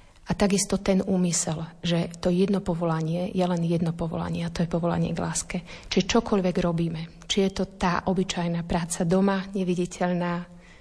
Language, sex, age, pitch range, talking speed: Slovak, female, 30-49, 170-185 Hz, 160 wpm